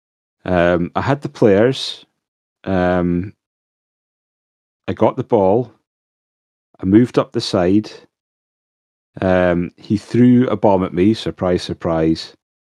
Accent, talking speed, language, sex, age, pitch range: British, 115 wpm, English, male, 30-49, 80-105 Hz